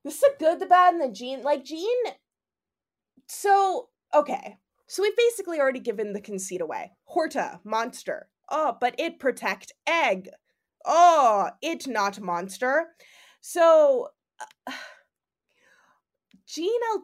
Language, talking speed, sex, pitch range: English, 125 wpm, female, 190-280 Hz